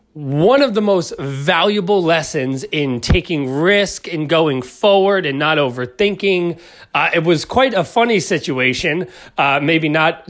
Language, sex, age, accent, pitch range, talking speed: English, male, 30-49, American, 140-190 Hz, 145 wpm